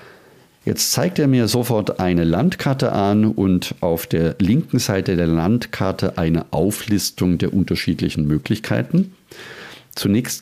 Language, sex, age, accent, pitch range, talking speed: German, male, 50-69, German, 85-120 Hz, 120 wpm